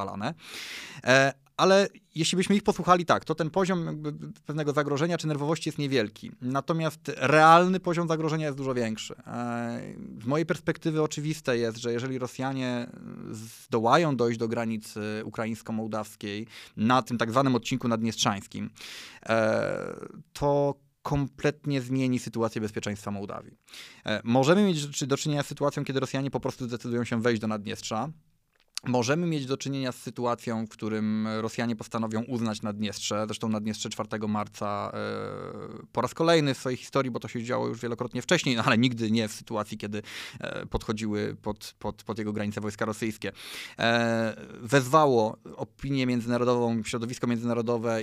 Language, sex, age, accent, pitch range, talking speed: Polish, male, 20-39, native, 110-150 Hz, 140 wpm